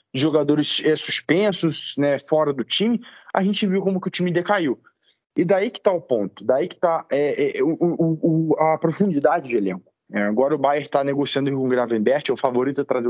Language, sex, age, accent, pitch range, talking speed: Portuguese, male, 20-39, Brazilian, 135-185 Hz, 200 wpm